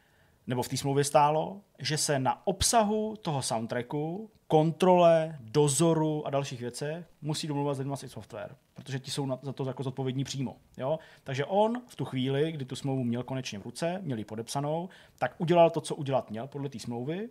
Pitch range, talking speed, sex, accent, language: 130-155 Hz, 185 wpm, male, native, Czech